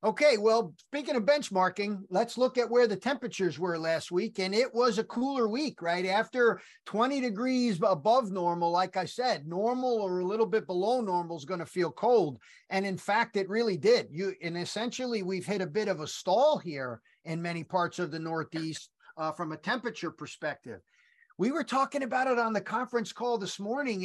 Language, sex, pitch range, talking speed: English, male, 180-245 Hz, 195 wpm